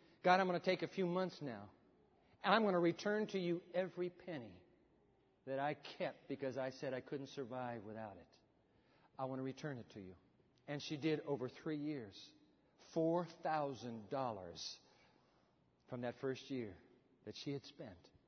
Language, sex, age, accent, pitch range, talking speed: English, male, 60-79, American, 145-215 Hz, 165 wpm